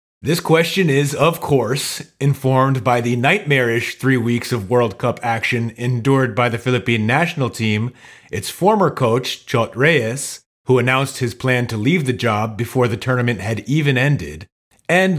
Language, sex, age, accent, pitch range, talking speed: English, male, 30-49, American, 120-155 Hz, 160 wpm